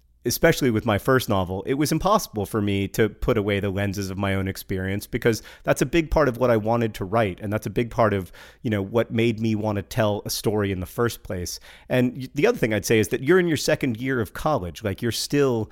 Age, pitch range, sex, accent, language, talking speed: 30-49, 105-120 Hz, male, American, English, 260 wpm